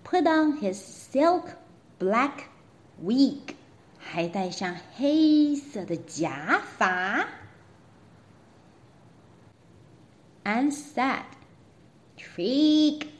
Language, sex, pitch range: Chinese, female, 200-325 Hz